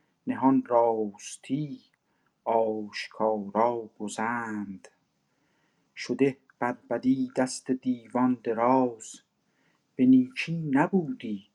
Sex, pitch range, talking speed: male, 120-145 Hz, 60 wpm